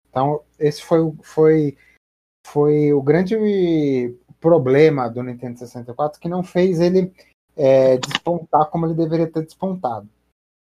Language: Portuguese